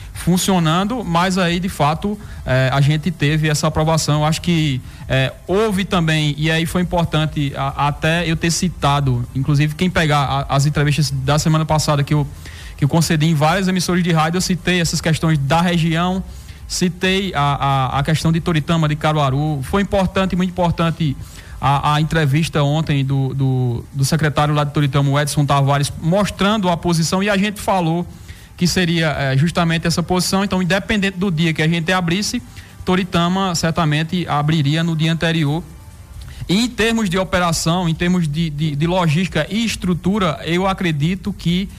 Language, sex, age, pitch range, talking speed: Portuguese, male, 20-39, 150-185 Hz, 160 wpm